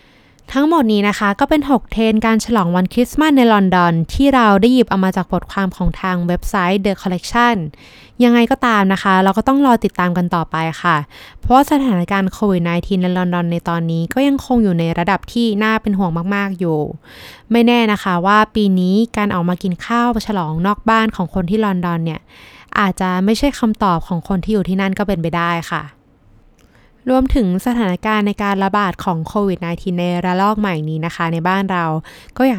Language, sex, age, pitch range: Thai, female, 20-39, 180-220 Hz